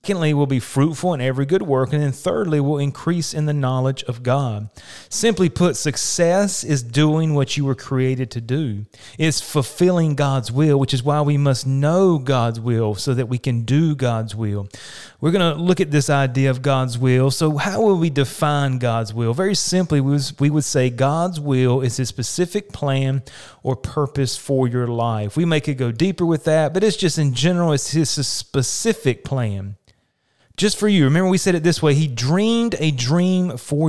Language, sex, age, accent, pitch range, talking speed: English, male, 30-49, American, 130-165 Hz, 195 wpm